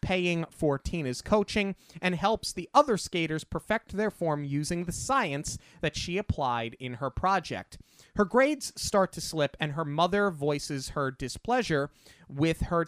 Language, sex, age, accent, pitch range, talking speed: English, male, 30-49, American, 125-175 Hz, 160 wpm